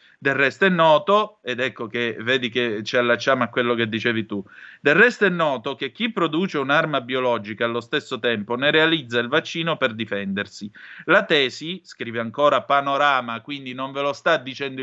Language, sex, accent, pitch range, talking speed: Italian, male, native, 120-165 Hz, 180 wpm